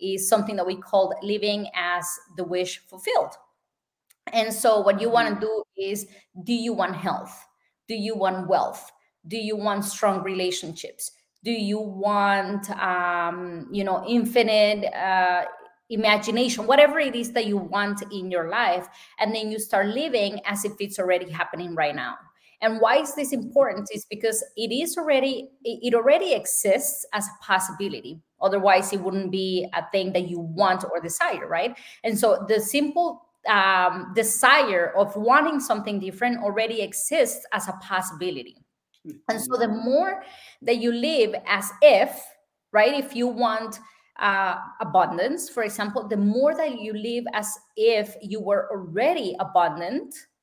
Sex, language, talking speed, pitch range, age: female, English, 155 wpm, 190-245 Hz, 20-39